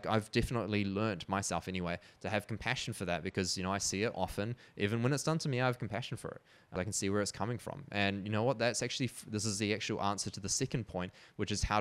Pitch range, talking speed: 95-115 Hz, 275 wpm